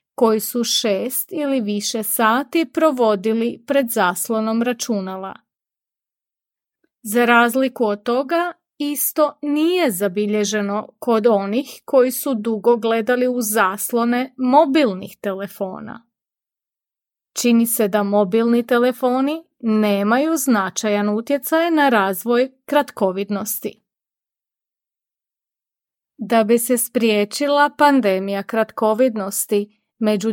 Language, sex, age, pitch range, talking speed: Croatian, female, 30-49, 210-270 Hz, 90 wpm